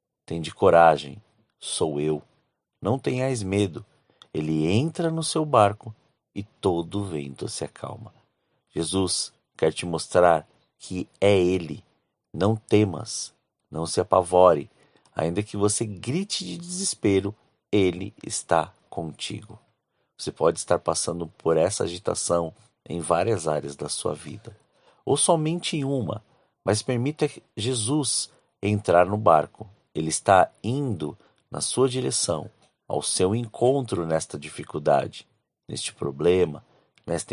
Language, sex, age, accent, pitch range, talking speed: Portuguese, male, 50-69, Brazilian, 90-125 Hz, 120 wpm